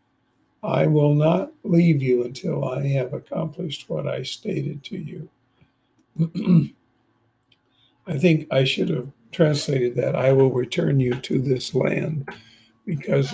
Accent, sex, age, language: American, male, 60-79, English